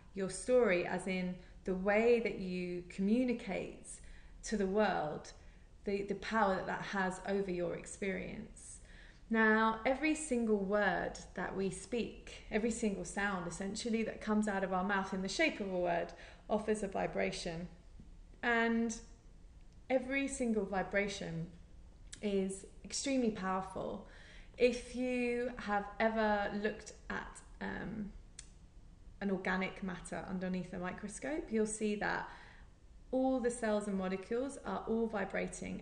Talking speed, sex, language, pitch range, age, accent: 130 wpm, female, English, 190-220 Hz, 20-39, British